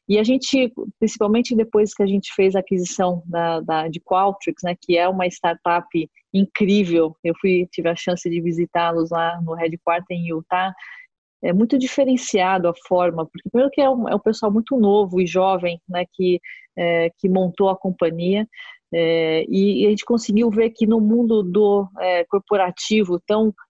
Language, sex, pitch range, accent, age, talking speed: English, female, 175-210 Hz, Brazilian, 40-59, 180 wpm